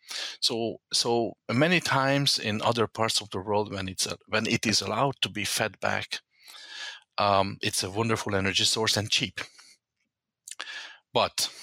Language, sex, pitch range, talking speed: English, male, 105-125 Hz, 155 wpm